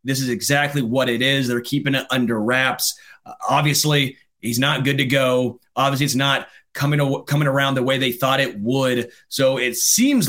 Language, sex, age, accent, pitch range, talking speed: English, male, 30-49, American, 125-145 Hz, 200 wpm